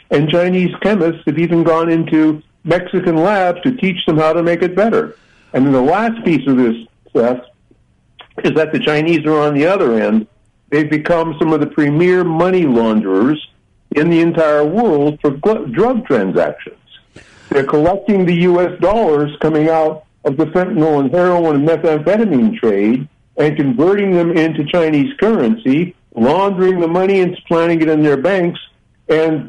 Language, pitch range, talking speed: English, 135-175 Hz, 165 wpm